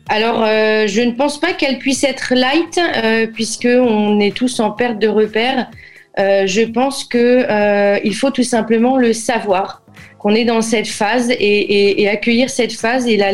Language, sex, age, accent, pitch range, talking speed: French, female, 30-49, French, 195-240 Hz, 195 wpm